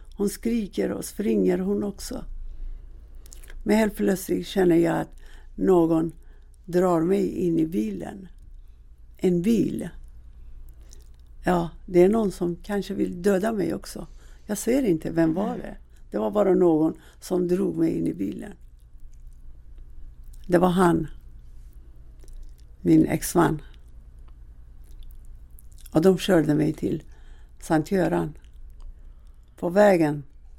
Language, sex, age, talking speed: Swedish, female, 60-79, 115 wpm